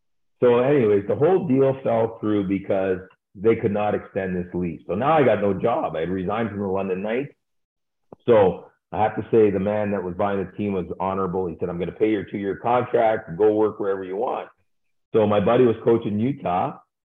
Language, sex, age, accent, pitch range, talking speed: English, male, 50-69, American, 95-115 Hz, 215 wpm